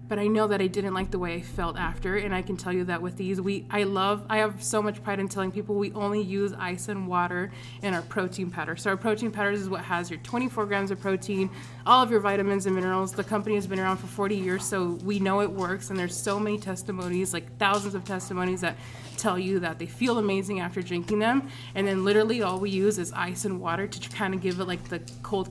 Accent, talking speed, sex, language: American, 255 wpm, female, English